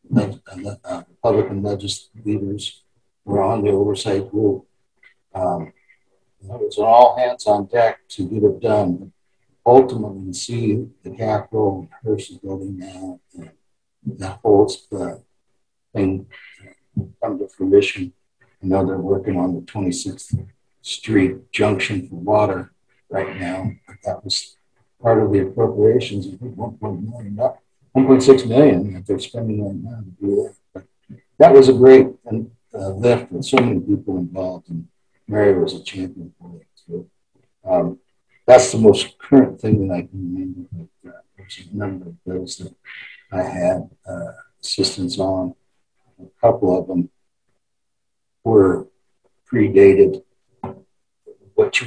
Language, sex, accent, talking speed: English, male, American, 145 wpm